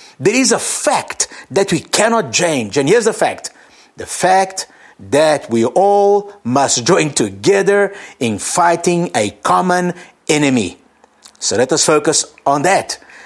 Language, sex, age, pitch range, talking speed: English, male, 50-69, 125-175 Hz, 140 wpm